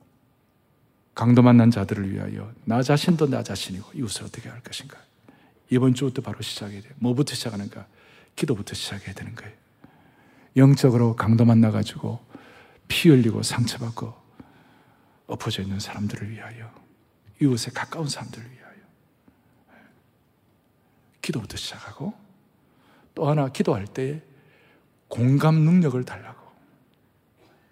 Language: Korean